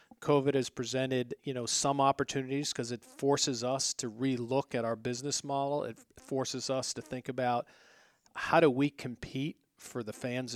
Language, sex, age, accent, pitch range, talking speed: English, male, 40-59, American, 120-140 Hz, 170 wpm